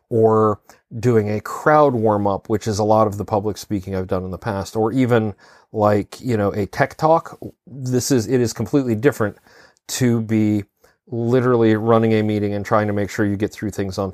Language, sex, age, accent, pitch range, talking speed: English, male, 40-59, American, 100-120 Hz, 205 wpm